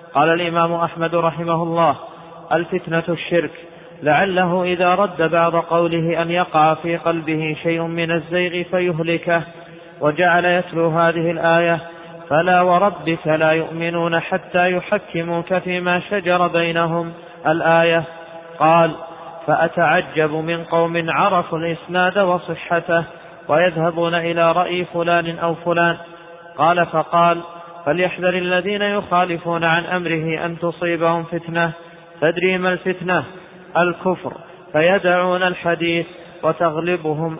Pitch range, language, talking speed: 165-175 Hz, Arabic, 105 wpm